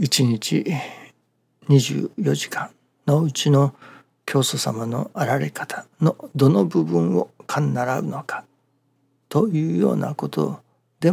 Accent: native